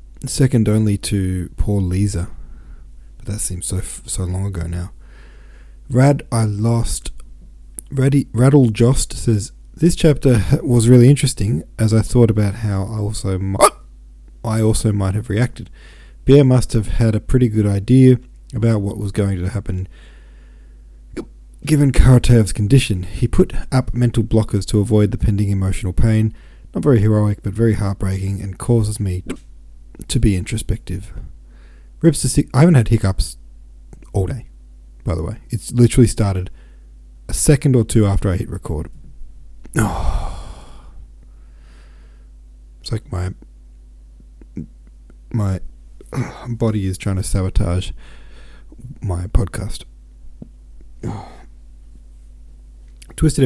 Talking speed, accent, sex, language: 130 wpm, Australian, male, English